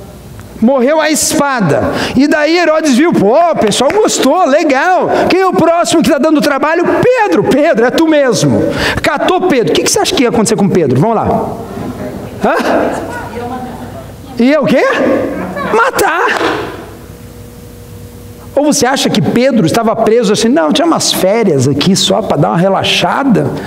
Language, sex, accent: Portuguese, male, Brazilian